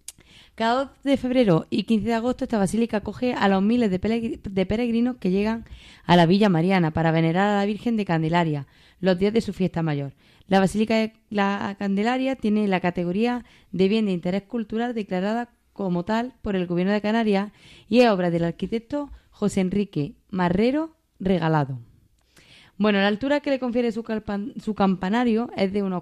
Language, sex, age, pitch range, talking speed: Spanish, female, 20-39, 185-225 Hz, 180 wpm